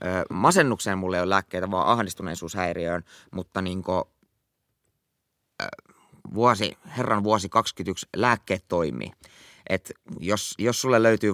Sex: male